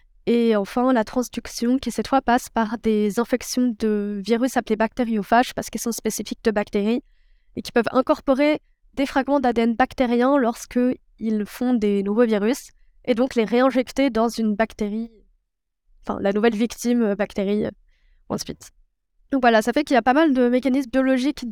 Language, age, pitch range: French, 20-39, 225-260 Hz